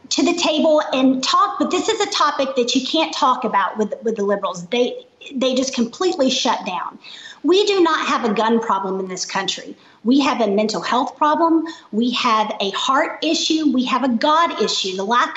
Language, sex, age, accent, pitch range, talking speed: English, female, 40-59, American, 220-300 Hz, 205 wpm